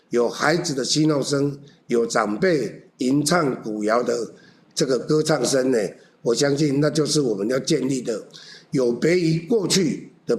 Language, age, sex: Chinese, 60-79, male